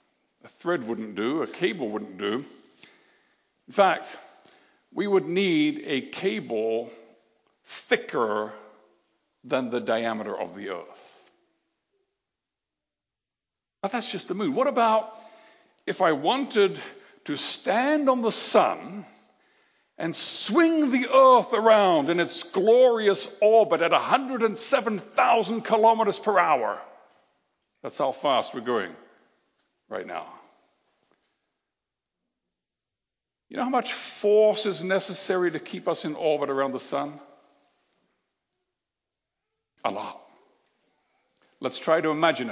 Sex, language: male, English